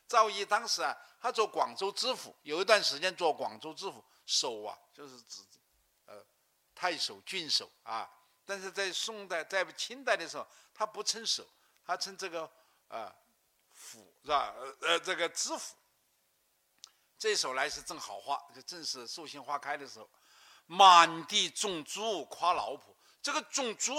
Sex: male